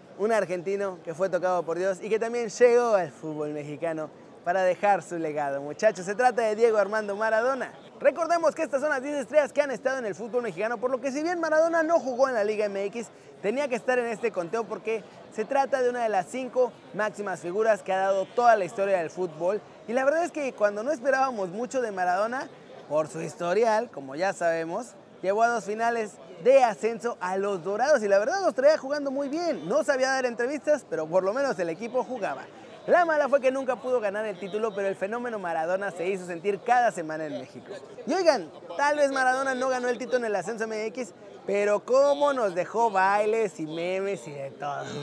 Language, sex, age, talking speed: Spanish, male, 20-39, 215 wpm